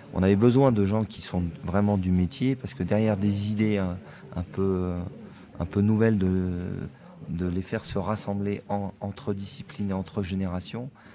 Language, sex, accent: French, male, French